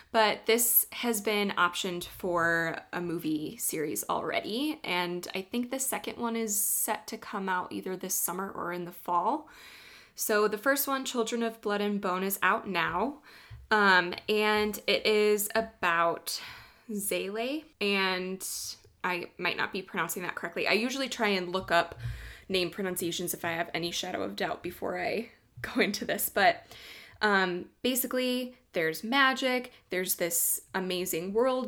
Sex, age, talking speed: female, 20-39, 155 wpm